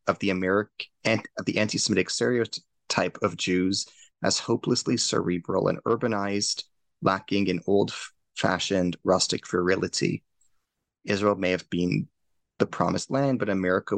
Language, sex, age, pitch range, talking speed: English, male, 30-49, 90-105 Hz, 105 wpm